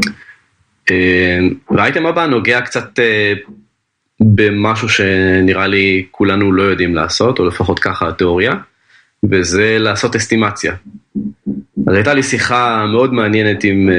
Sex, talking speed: male, 105 wpm